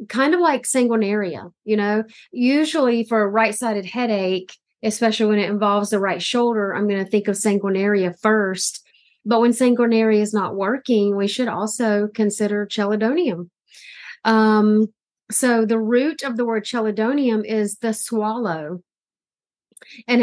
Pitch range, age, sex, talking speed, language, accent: 205-235 Hz, 30-49, female, 140 wpm, English, American